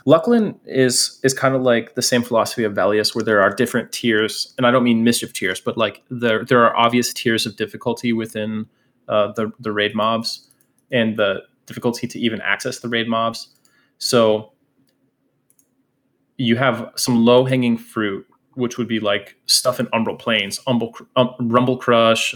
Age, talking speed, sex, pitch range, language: 20-39, 175 wpm, male, 110-125 Hz, English